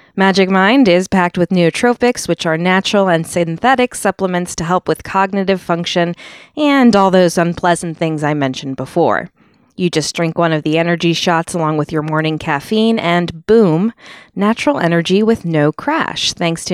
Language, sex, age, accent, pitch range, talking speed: English, female, 20-39, American, 160-205 Hz, 170 wpm